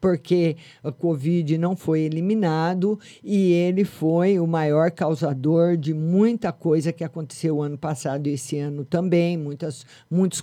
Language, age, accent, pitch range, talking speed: Portuguese, 50-69, Brazilian, 155-210 Hz, 150 wpm